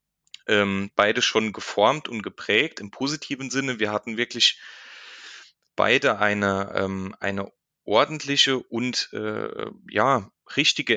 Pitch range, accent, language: 105-135 Hz, German, German